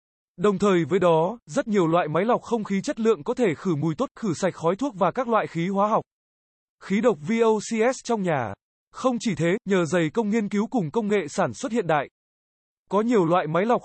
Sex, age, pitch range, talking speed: male, 20-39, 170-225 Hz, 230 wpm